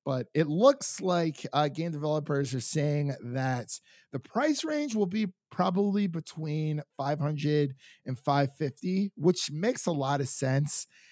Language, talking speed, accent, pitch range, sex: English, 140 wpm, American, 125-155 Hz, male